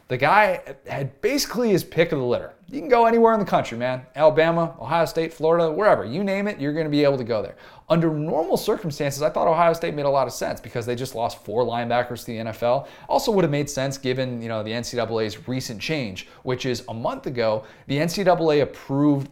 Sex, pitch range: male, 120-155 Hz